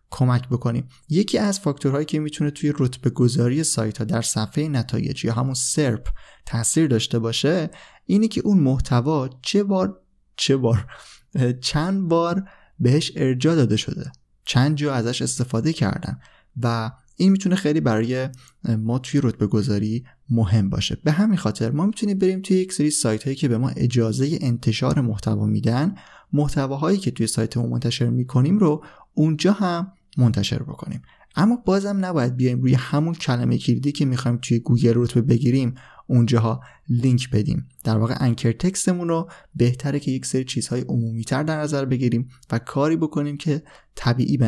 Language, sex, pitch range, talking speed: Persian, male, 120-155 Hz, 155 wpm